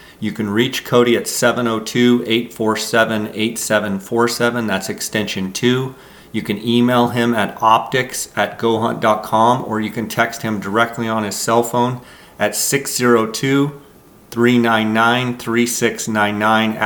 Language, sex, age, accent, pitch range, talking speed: English, male, 40-59, American, 110-120 Hz, 105 wpm